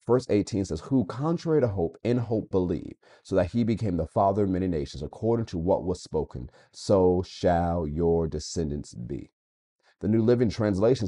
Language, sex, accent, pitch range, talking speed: English, male, American, 85-110 Hz, 180 wpm